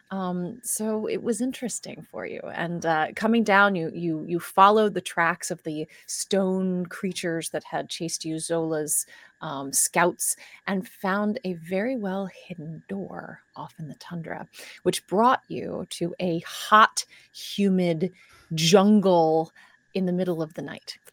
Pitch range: 170-215 Hz